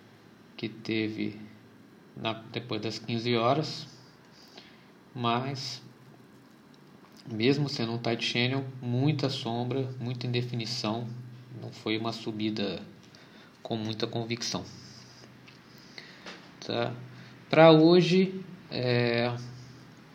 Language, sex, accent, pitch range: Portuguese, male, Brazilian, 110-135 Hz